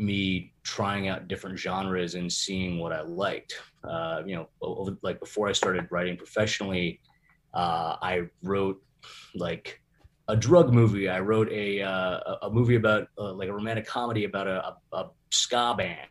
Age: 30-49